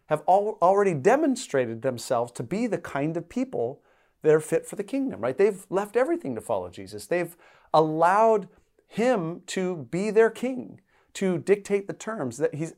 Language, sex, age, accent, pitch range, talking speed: English, male, 40-59, American, 135-200 Hz, 170 wpm